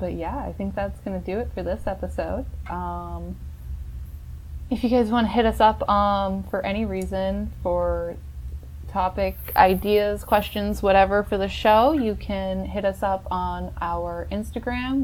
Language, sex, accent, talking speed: English, female, American, 160 wpm